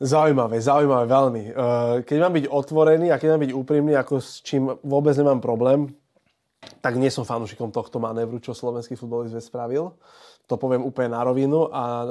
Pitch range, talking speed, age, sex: 120-140 Hz, 170 wpm, 20-39, male